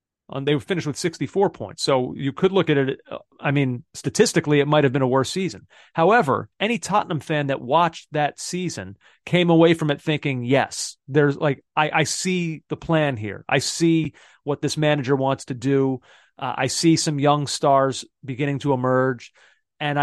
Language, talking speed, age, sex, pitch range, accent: English, 185 wpm, 30-49, male, 130-155 Hz, American